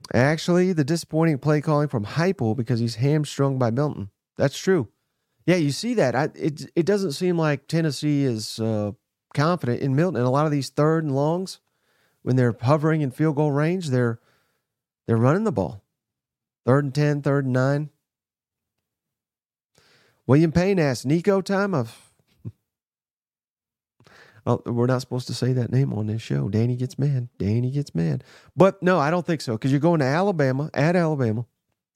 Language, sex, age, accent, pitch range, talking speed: English, male, 40-59, American, 120-150 Hz, 170 wpm